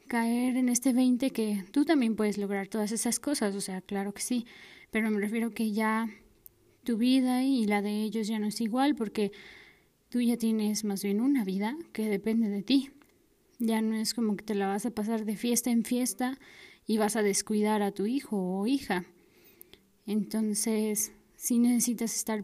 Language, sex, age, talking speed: Spanish, female, 20-39, 190 wpm